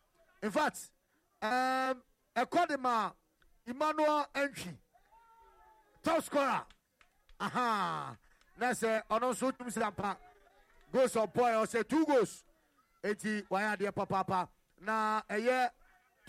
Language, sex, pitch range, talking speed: English, male, 200-265 Hz, 110 wpm